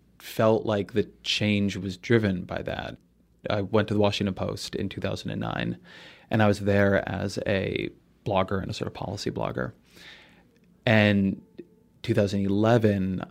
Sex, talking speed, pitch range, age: male, 140 wpm, 95-110 Hz, 20-39